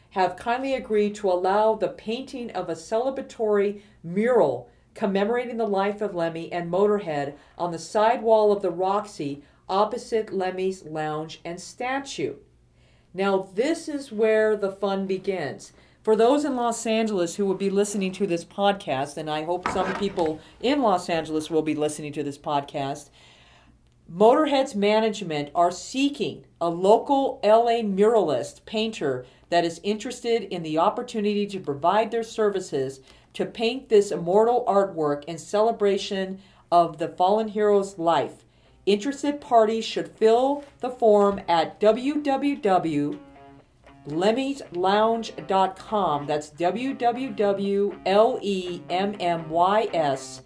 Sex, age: female, 50-69